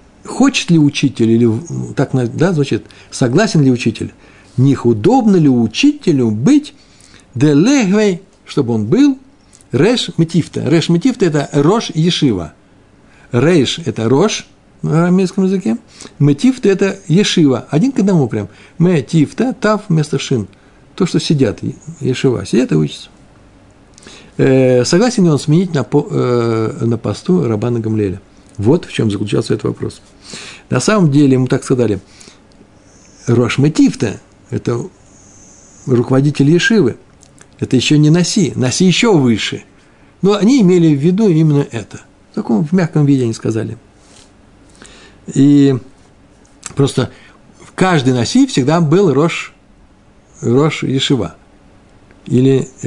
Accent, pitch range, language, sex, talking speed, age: native, 110-175 Hz, Russian, male, 115 wpm, 60-79